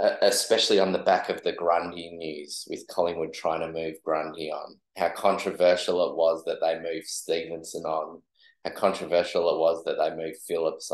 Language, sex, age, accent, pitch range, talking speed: English, male, 20-39, Australian, 80-95 Hz, 175 wpm